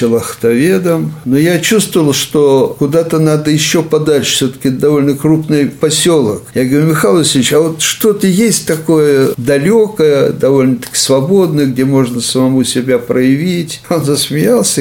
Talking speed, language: 130 wpm, Russian